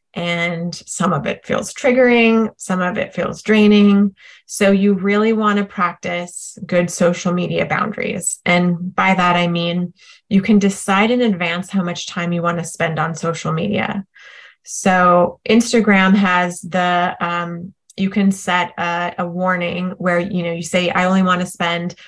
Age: 20-39